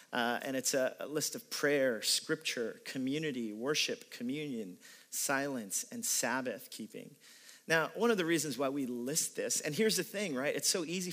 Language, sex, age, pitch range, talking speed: English, male, 40-59, 140-220 Hz, 180 wpm